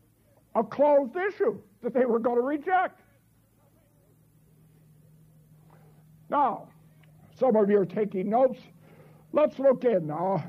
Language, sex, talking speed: English, male, 115 wpm